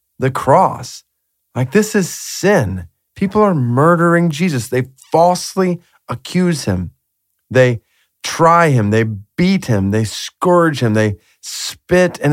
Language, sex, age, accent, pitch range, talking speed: English, male, 40-59, American, 110-155 Hz, 125 wpm